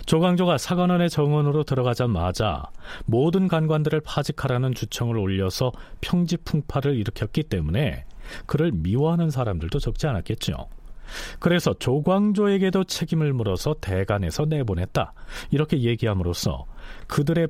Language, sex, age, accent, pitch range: Korean, male, 40-59, native, 105-160 Hz